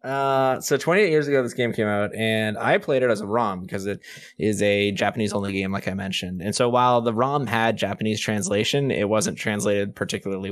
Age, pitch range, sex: 20-39, 110-140 Hz, male